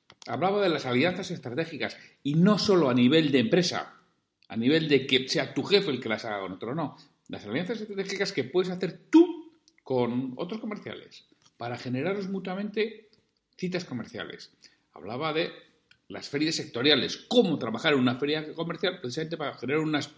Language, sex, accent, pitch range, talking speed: Spanish, male, Spanish, 140-195 Hz, 165 wpm